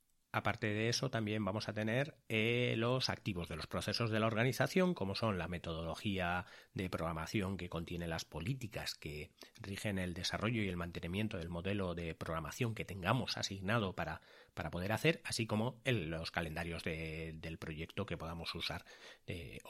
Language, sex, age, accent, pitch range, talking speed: Spanish, male, 30-49, Spanish, 90-125 Hz, 165 wpm